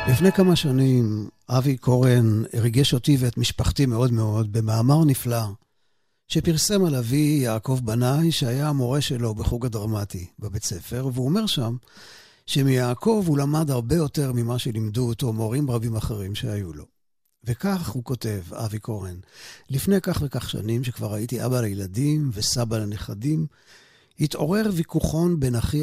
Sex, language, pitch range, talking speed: male, Hebrew, 110-150 Hz, 140 wpm